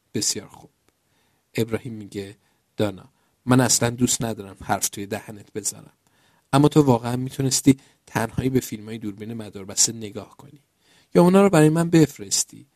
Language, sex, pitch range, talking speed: Persian, male, 105-140 Hz, 140 wpm